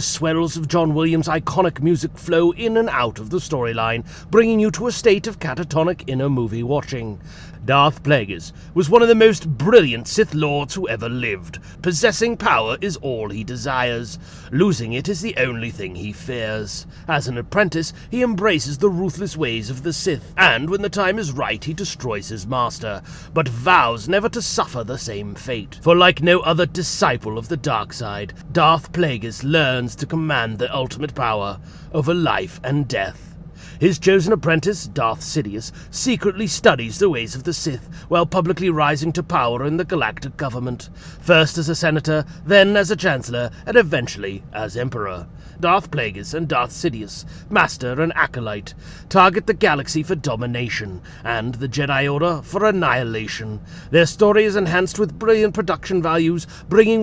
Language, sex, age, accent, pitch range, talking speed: English, male, 30-49, British, 120-180 Hz, 170 wpm